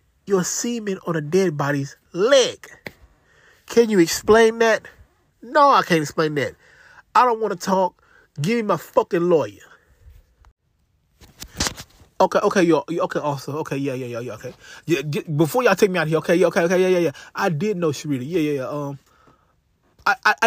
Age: 20-39